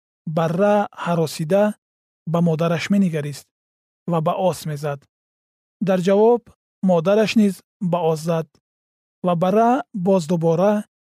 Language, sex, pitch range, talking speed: Persian, male, 155-200 Hz, 110 wpm